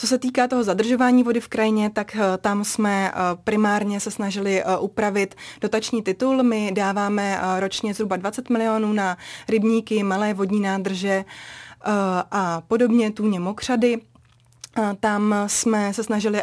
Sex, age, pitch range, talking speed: female, 20-39, 200-225 Hz, 130 wpm